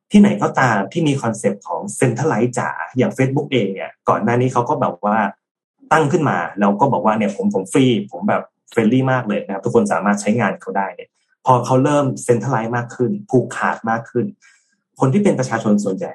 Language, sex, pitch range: Thai, male, 115-160 Hz